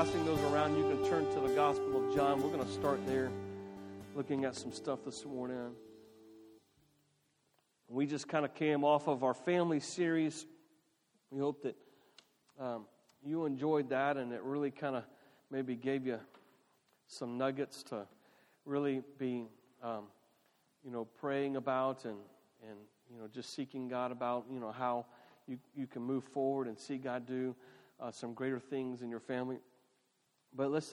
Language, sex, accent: English, male, American